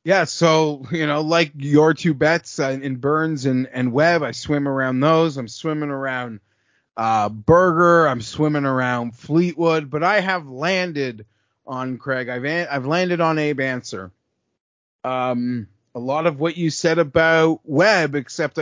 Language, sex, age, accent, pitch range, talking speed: English, male, 30-49, American, 130-160 Hz, 160 wpm